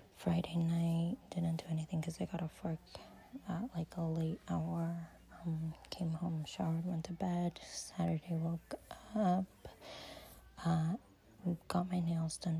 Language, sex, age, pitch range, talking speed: English, female, 20-39, 165-185 Hz, 145 wpm